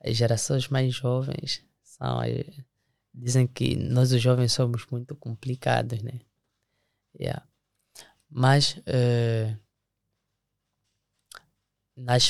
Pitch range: 120-150 Hz